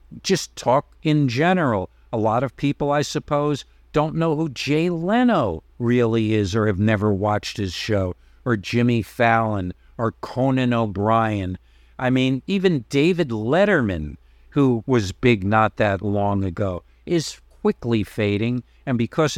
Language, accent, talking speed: English, American, 140 wpm